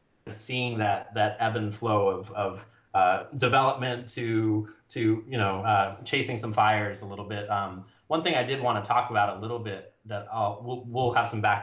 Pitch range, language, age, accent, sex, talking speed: 100-115 Hz, English, 30-49, American, male, 210 wpm